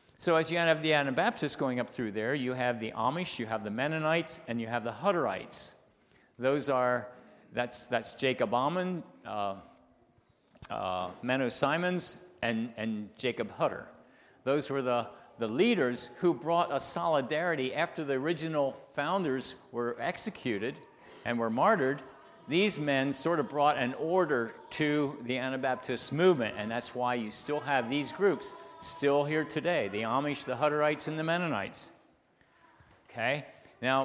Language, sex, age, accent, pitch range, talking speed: English, male, 50-69, American, 125-165 Hz, 150 wpm